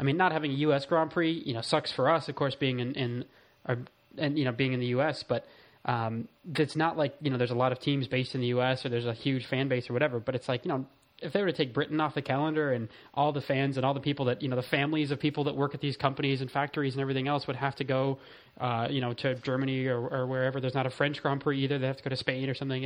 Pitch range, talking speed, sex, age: 130-145 Hz, 305 wpm, male, 20-39